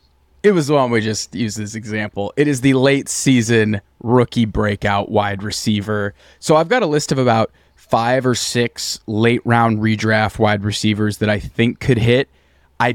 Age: 20-39